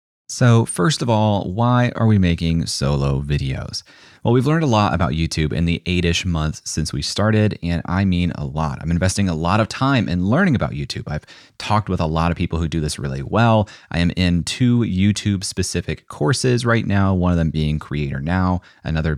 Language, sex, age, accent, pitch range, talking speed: English, male, 30-49, American, 80-110 Hz, 215 wpm